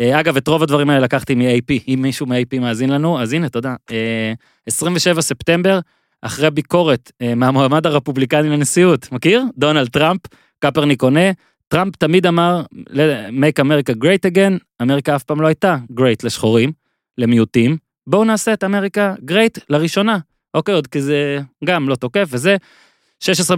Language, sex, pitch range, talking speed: Hebrew, male, 130-170 Hz, 145 wpm